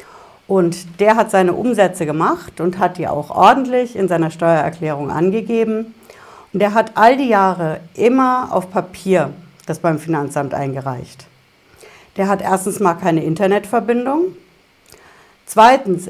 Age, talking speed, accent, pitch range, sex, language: 60-79, 130 wpm, German, 170-225 Hz, female, German